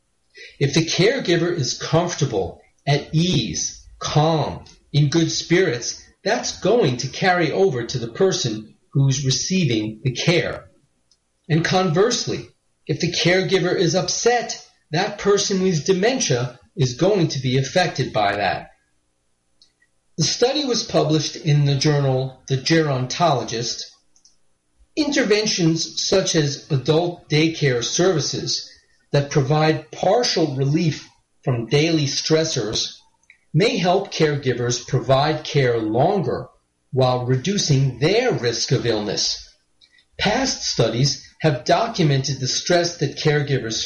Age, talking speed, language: 40-59, 115 wpm, English